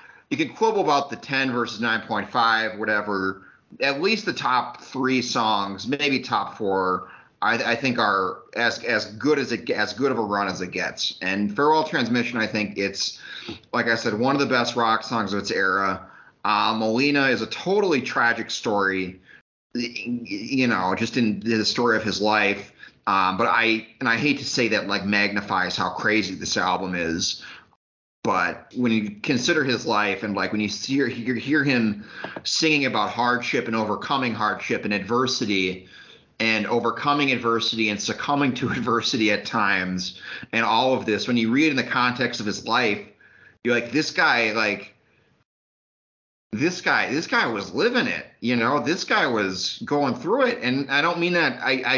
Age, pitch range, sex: 30-49, 105-135 Hz, male